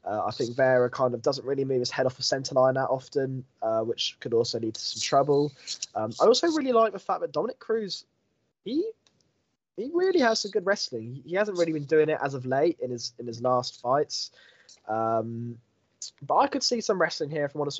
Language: English